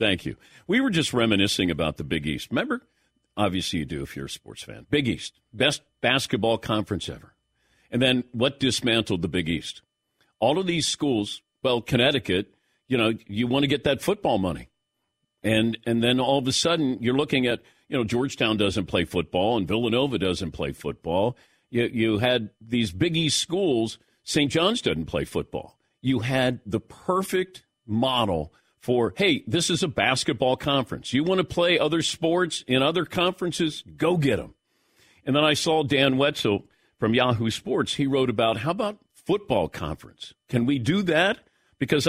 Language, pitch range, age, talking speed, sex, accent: English, 105-145 Hz, 50-69, 180 wpm, male, American